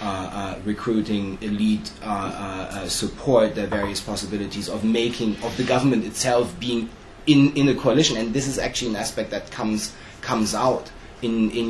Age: 30-49